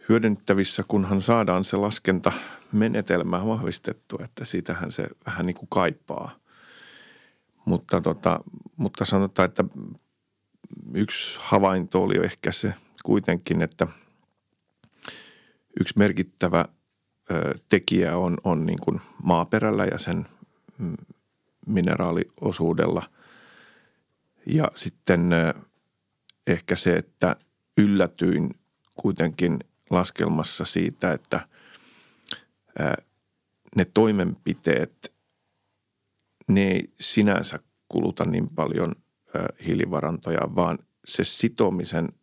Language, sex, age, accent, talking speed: Finnish, male, 40-59, native, 80 wpm